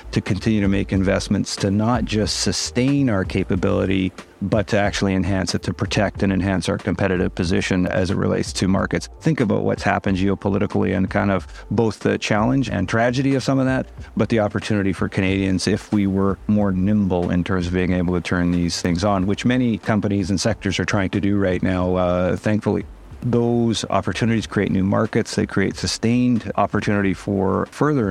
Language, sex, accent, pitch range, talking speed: English, male, American, 95-110 Hz, 190 wpm